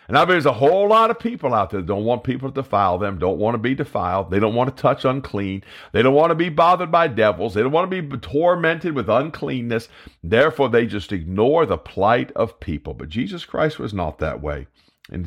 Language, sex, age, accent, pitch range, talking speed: English, male, 50-69, American, 95-140 Hz, 240 wpm